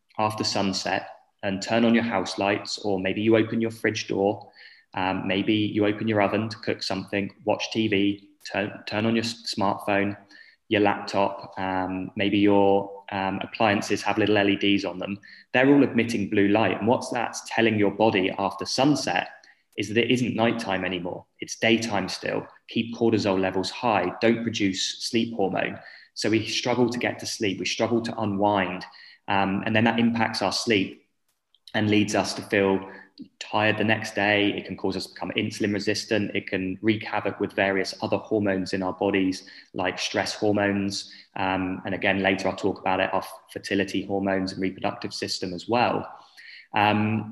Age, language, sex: 20-39, English, male